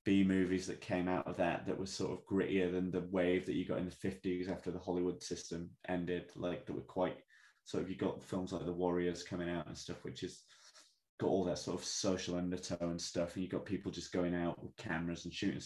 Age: 20-39